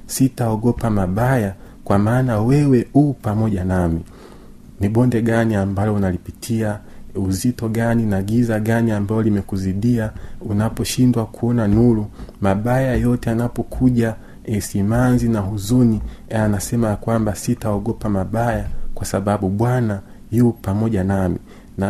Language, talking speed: Swahili, 110 wpm